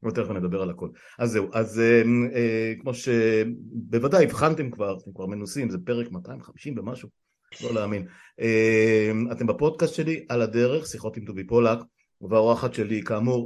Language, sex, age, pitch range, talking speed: Hebrew, male, 50-69, 110-125 Hz, 155 wpm